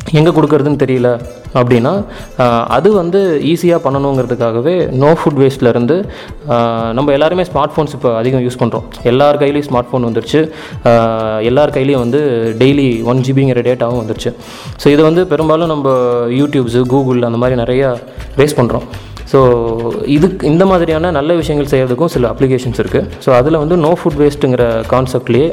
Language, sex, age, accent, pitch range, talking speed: Tamil, male, 20-39, native, 120-150 Hz, 145 wpm